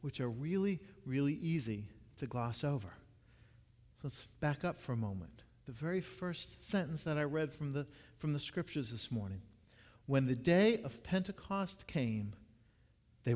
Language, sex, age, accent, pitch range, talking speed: English, male, 50-69, American, 120-185 Hz, 155 wpm